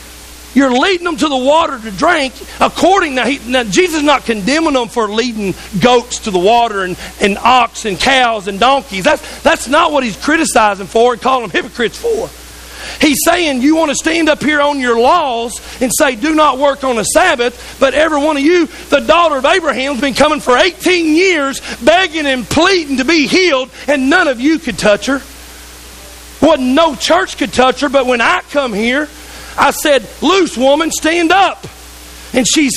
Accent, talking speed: American, 200 wpm